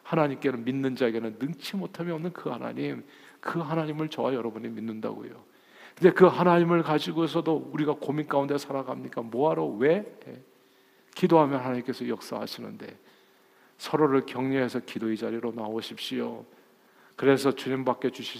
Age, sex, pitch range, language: 40-59, male, 120-160 Hz, Korean